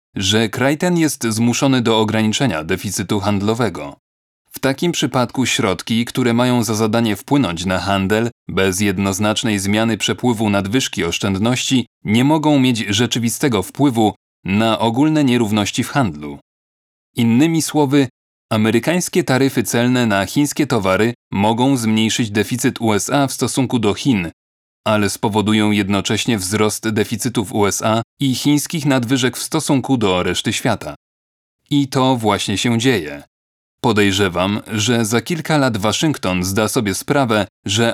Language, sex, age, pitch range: Polish, male, 30-49, 100-130 Hz